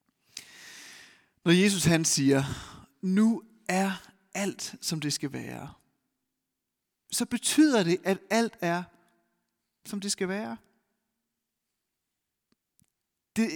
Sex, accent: male, native